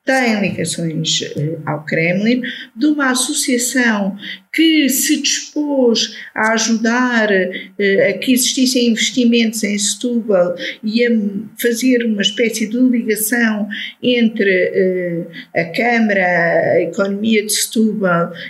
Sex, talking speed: female, 115 wpm